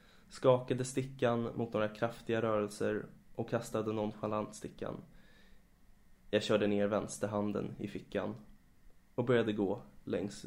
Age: 20-39